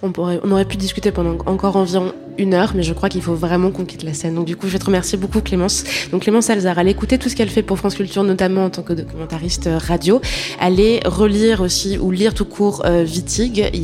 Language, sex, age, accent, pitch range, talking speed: French, female, 20-39, French, 170-200 Hz, 250 wpm